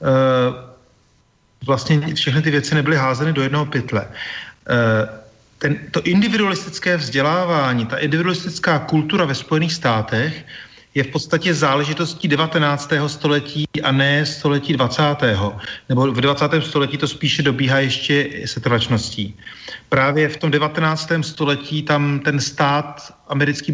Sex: male